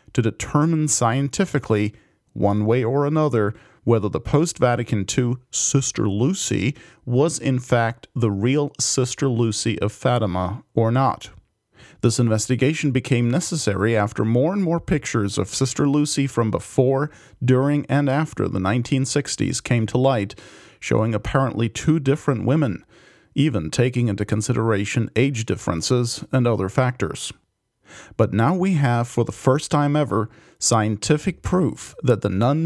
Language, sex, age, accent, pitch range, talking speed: English, male, 40-59, American, 110-135 Hz, 135 wpm